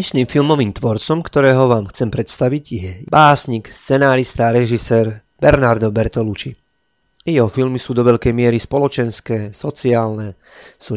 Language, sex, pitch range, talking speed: Slovak, male, 110-130 Hz, 125 wpm